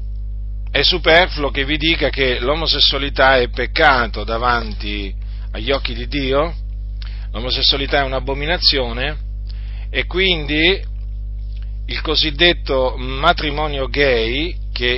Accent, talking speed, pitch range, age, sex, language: native, 95 wpm, 100-160 Hz, 40-59, male, Italian